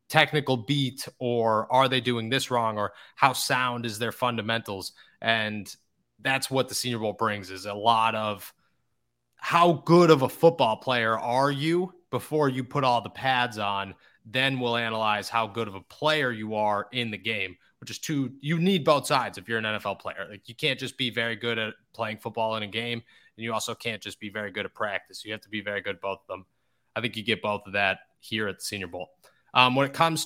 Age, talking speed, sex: 20-39, 225 wpm, male